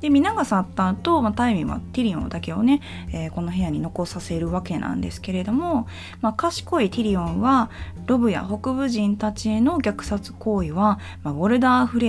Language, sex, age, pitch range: Japanese, female, 20-39, 155-250 Hz